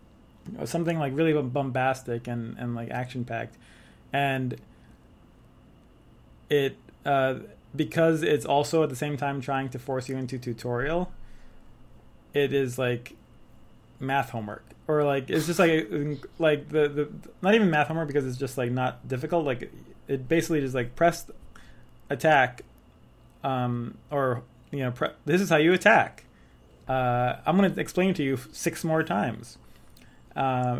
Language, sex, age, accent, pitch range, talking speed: English, male, 20-39, American, 120-150 Hz, 150 wpm